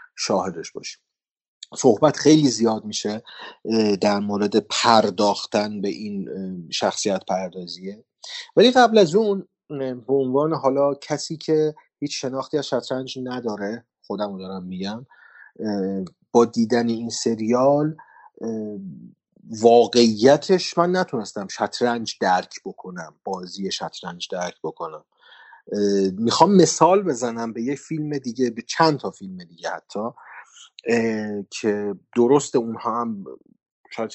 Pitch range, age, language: 105-150 Hz, 30-49, Persian